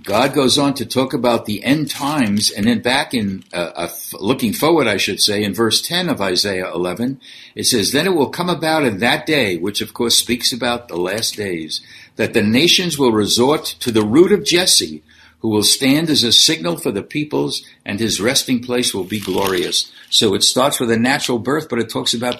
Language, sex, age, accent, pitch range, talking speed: English, male, 60-79, American, 105-140 Hz, 215 wpm